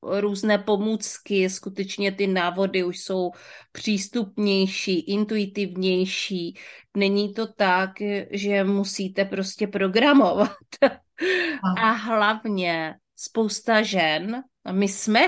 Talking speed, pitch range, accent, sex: 85 wpm, 185-215 Hz, native, female